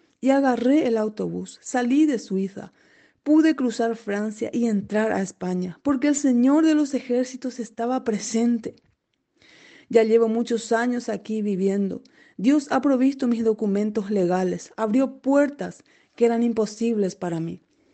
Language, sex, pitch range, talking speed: Spanish, female, 210-265 Hz, 135 wpm